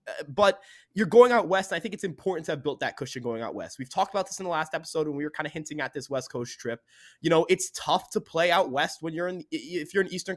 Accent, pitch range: American, 155-220 Hz